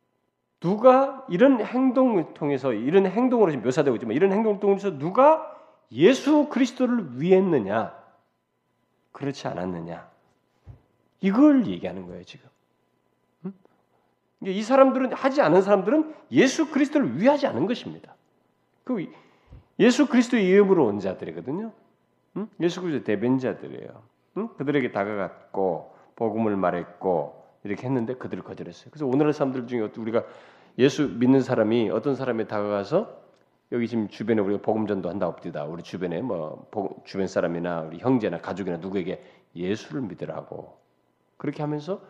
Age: 40-59